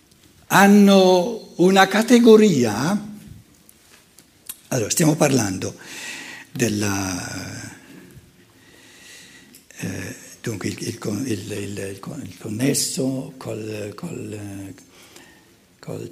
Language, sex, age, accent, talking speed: Italian, male, 60-79, native, 45 wpm